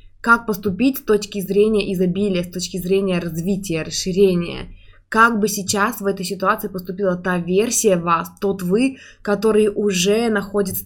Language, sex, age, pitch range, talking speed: Russian, female, 20-39, 170-195 Hz, 145 wpm